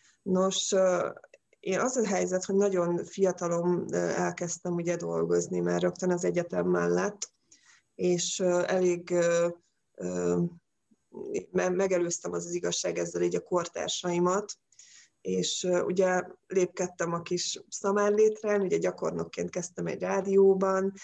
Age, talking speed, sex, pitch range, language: 20-39, 105 wpm, female, 165-200 Hz, Hungarian